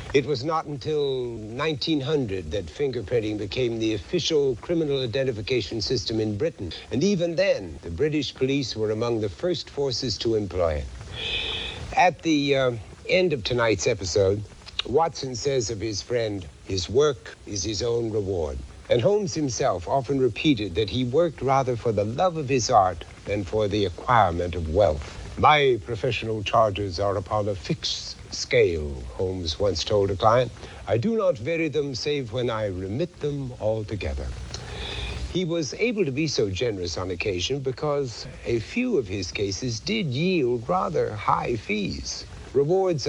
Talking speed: 155 wpm